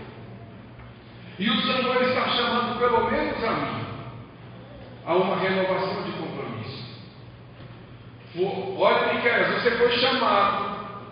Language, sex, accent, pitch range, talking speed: English, male, Brazilian, 210-290 Hz, 110 wpm